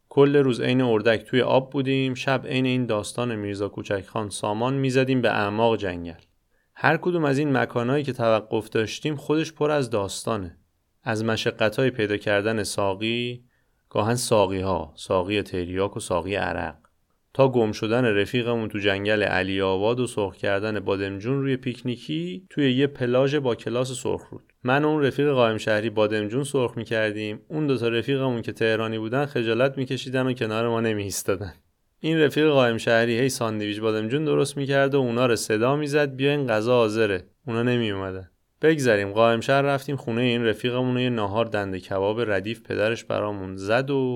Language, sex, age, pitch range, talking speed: Persian, male, 30-49, 105-130 Hz, 165 wpm